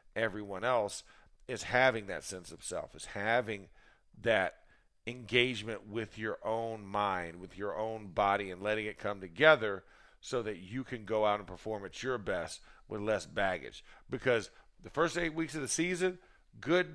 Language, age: English, 50-69